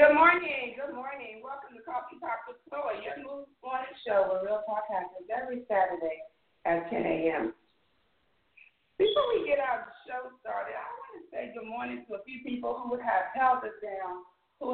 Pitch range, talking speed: 180-275 Hz, 185 wpm